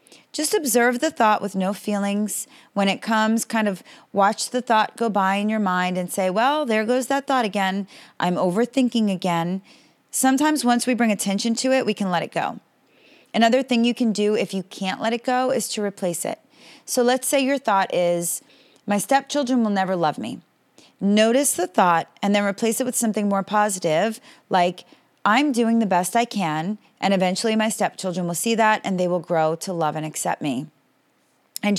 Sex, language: female, English